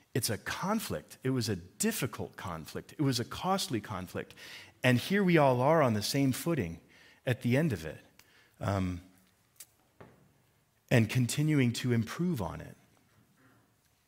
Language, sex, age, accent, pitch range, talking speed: English, male, 40-59, American, 105-135 Hz, 145 wpm